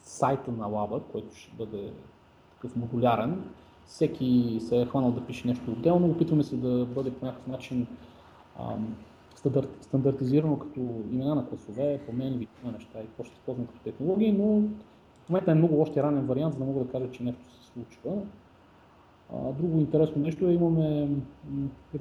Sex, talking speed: male, 170 wpm